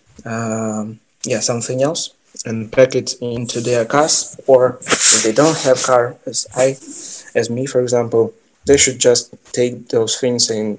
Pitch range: 110-130 Hz